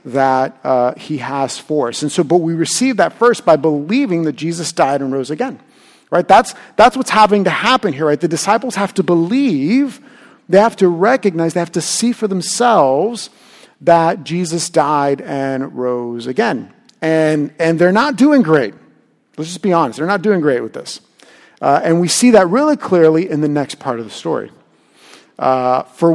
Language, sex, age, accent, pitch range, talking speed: English, male, 40-59, American, 145-210 Hz, 190 wpm